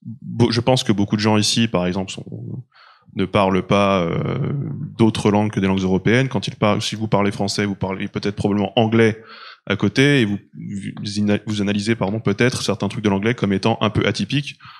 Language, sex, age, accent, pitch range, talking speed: French, male, 20-39, French, 100-115 Hz, 205 wpm